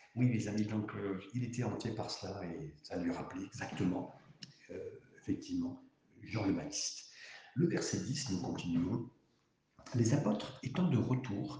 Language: French